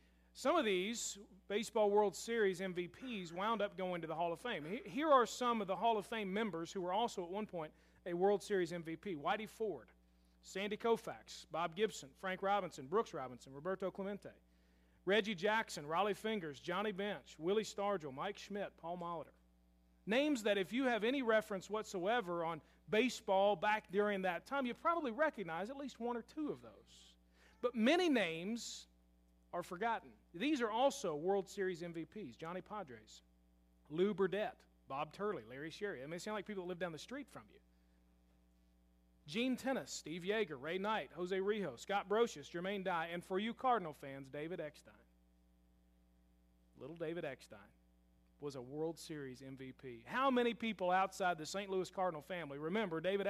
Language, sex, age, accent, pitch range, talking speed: English, male, 40-59, American, 145-220 Hz, 170 wpm